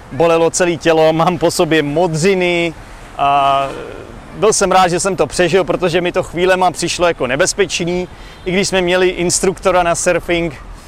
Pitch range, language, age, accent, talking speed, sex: 150-190 Hz, Czech, 30-49, native, 160 wpm, male